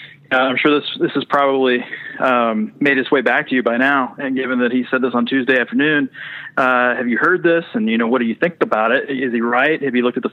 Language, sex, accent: English, male, American